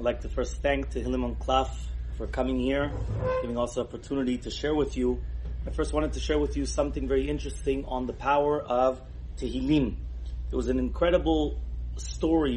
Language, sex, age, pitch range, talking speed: English, male, 30-49, 105-160 Hz, 180 wpm